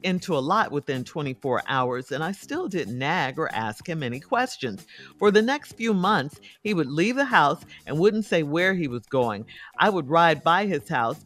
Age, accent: 50-69, American